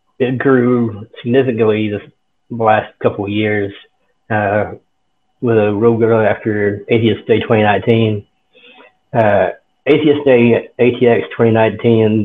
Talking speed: 110 wpm